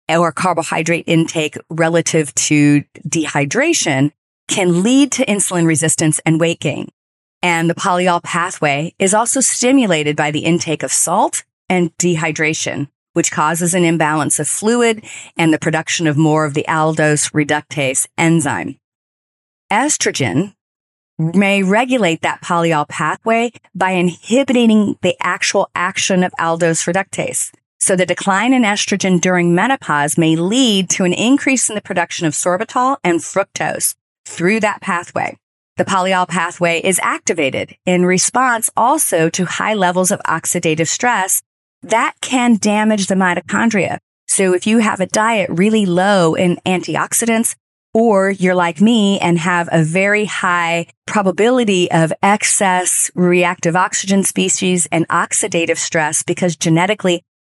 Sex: female